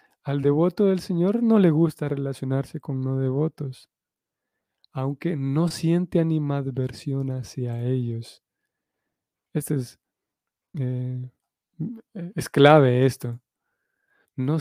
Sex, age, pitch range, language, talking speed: male, 20-39, 130-160 Hz, Spanish, 95 wpm